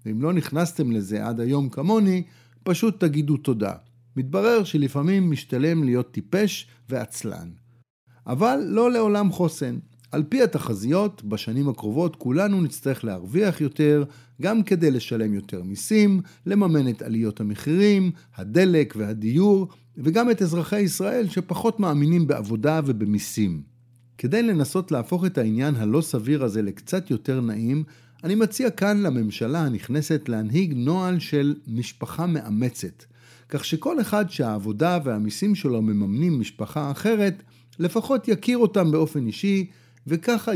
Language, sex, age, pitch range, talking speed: Hebrew, male, 50-69, 120-185 Hz, 125 wpm